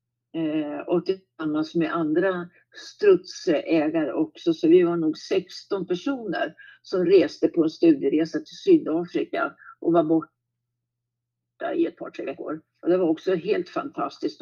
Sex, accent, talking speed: female, native, 135 wpm